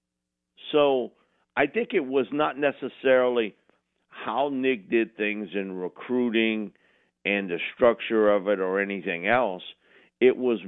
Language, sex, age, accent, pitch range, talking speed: English, male, 50-69, American, 90-125 Hz, 130 wpm